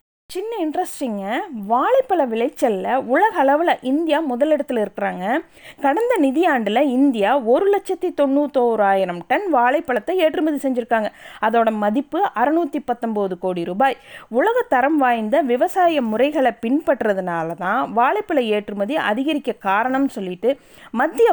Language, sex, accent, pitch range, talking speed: Tamil, female, native, 230-330 Hz, 105 wpm